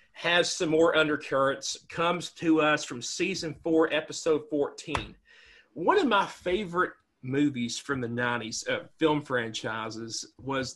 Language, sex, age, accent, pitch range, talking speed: English, male, 40-59, American, 135-170 Hz, 135 wpm